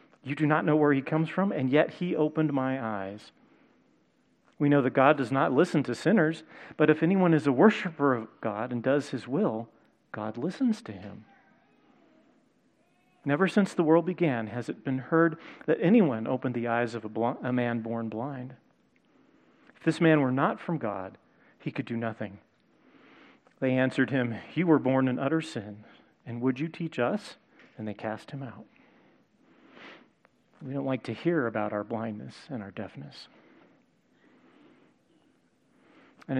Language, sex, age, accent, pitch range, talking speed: English, male, 40-59, American, 115-155 Hz, 165 wpm